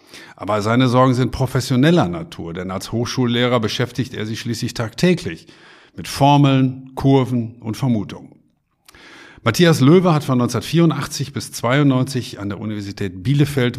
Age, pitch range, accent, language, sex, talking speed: 50-69, 110-135 Hz, German, German, male, 130 wpm